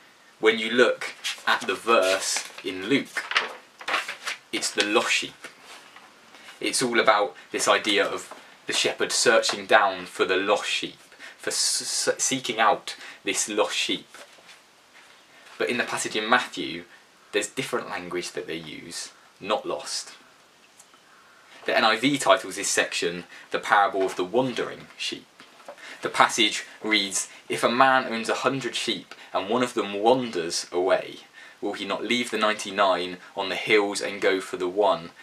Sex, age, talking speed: male, 20-39, 150 wpm